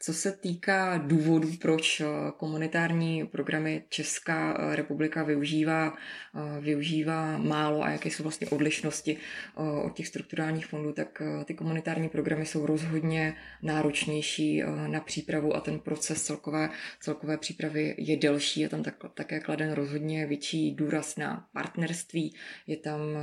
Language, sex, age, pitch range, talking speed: Czech, female, 20-39, 145-160 Hz, 125 wpm